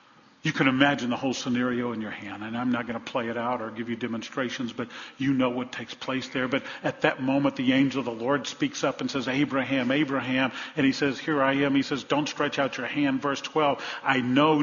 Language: English